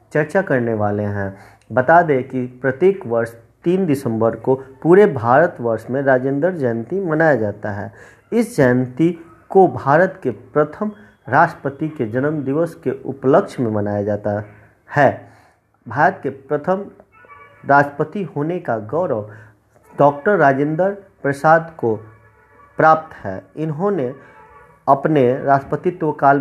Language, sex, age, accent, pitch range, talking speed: Hindi, male, 50-69, native, 120-160 Hz, 115 wpm